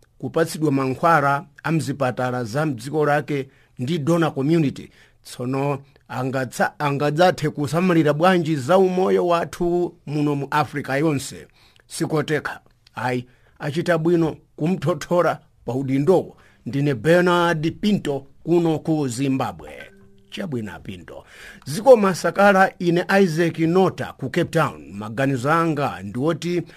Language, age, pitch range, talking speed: English, 50-69, 125-170 Hz, 100 wpm